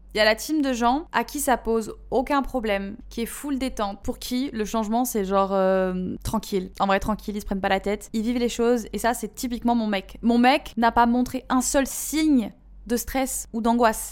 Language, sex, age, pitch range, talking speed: French, female, 20-39, 205-250 Hz, 240 wpm